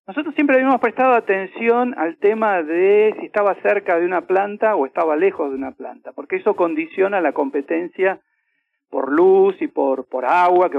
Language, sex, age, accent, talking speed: Spanish, male, 50-69, Argentinian, 180 wpm